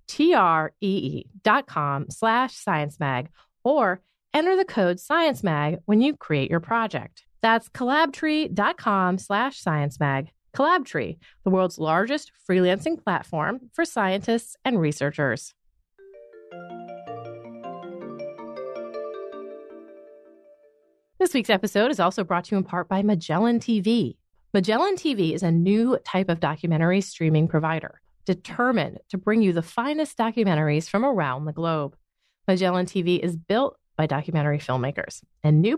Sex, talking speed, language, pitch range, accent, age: female, 130 wpm, English, 155-230 Hz, American, 30-49